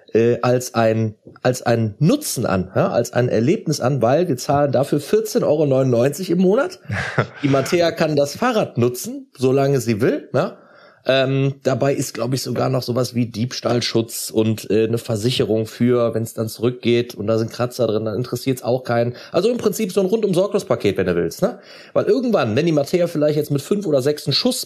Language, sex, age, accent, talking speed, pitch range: German, male, 30-49, German, 200 wpm, 120-165 Hz